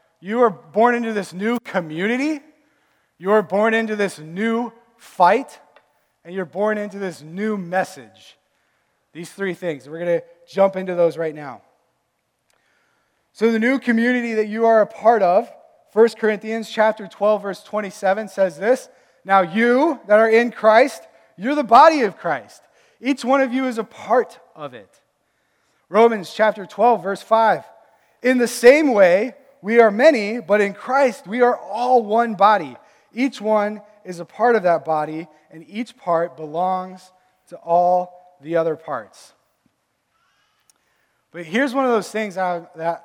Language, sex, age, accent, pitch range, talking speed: English, male, 20-39, American, 180-235 Hz, 160 wpm